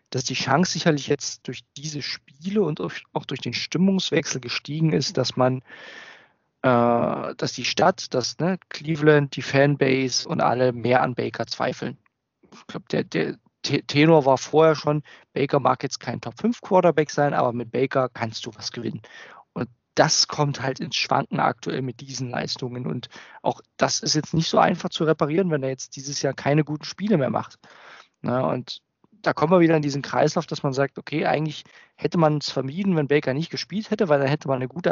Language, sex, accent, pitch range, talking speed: German, male, German, 135-170 Hz, 190 wpm